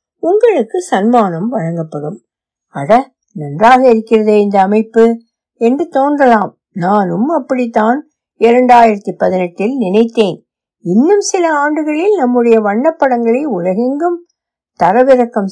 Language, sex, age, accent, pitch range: Tamil, female, 60-79, native, 210-275 Hz